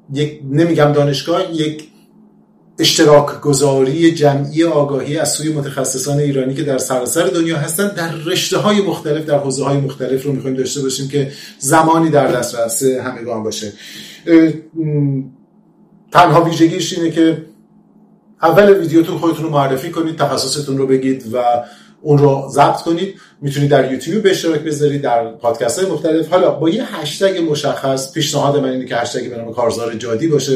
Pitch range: 130-160 Hz